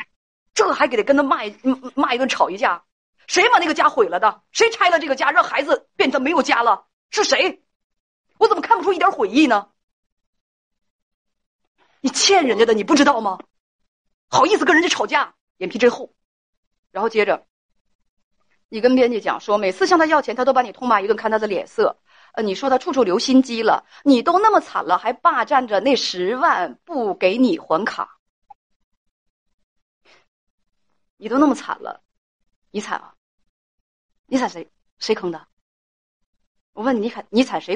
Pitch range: 220-325 Hz